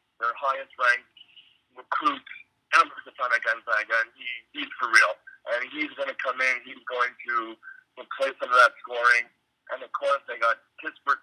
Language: English